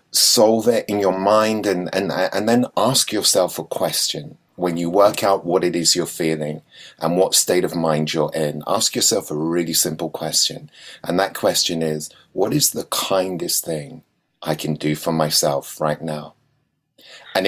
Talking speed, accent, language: 175 wpm, British, English